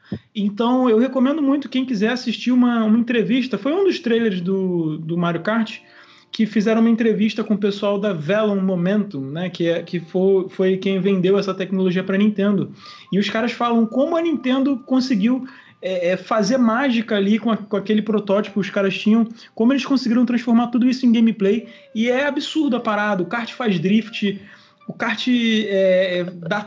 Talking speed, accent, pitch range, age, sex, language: 185 wpm, Brazilian, 190-230 Hz, 20-39, male, Portuguese